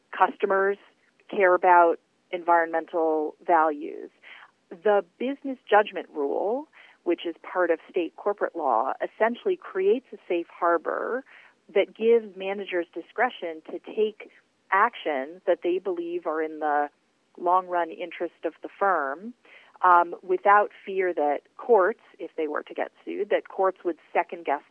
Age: 40-59